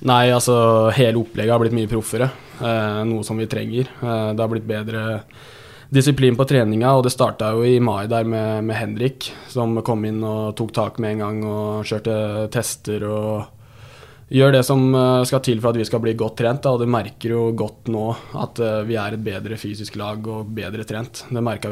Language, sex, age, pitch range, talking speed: English, male, 20-39, 110-125 Hz, 205 wpm